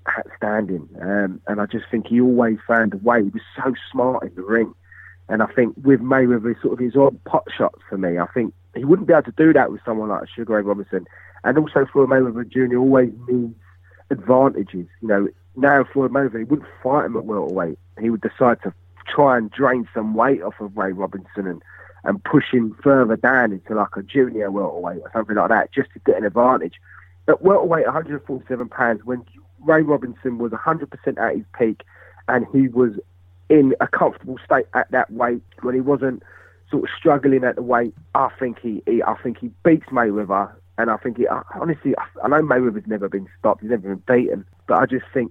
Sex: male